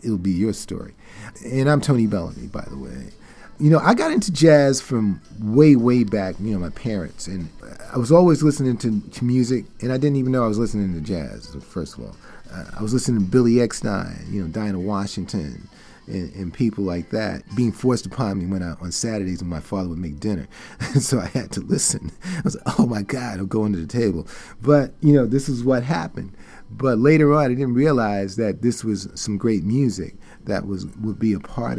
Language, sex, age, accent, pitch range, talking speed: English, male, 40-59, American, 100-130 Hz, 220 wpm